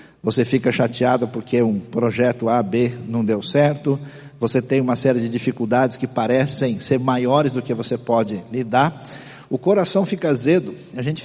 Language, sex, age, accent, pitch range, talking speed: Portuguese, male, 60-79, Brazilian, 120-175 Hz, 170 wpm